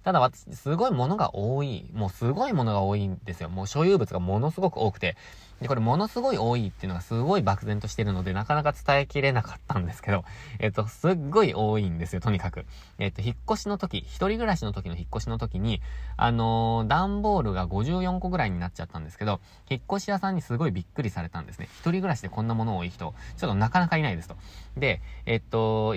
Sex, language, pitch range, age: male, Japanese, 95-140 Hz, 20-39